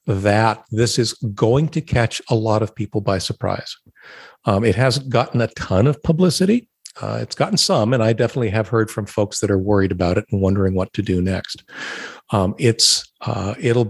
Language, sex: English, male